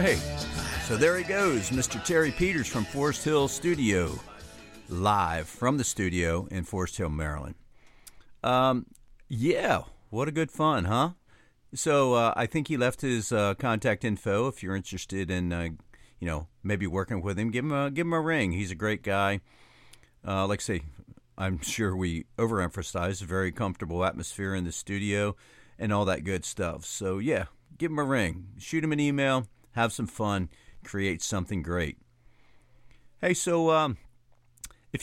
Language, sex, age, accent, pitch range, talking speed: English, male, 50-69, American, 95-130 Hz, 170 wpm